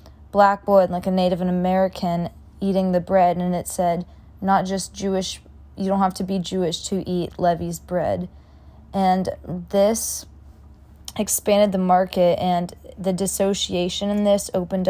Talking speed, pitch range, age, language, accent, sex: 145 wpm, 170-195 Hz, 20-39, English, American, female